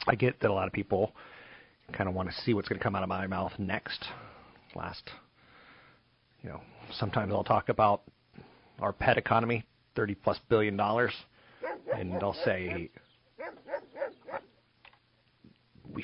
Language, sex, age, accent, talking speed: English, male, 40-59, American, 145 wpm